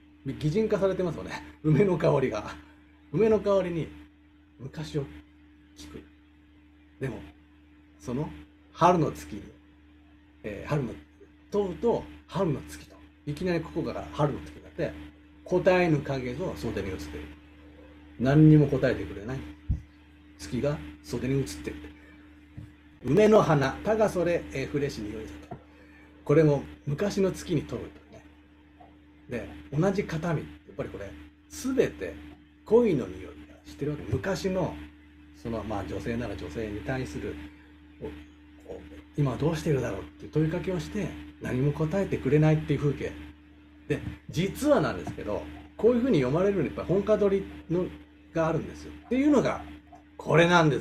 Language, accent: Japanese, native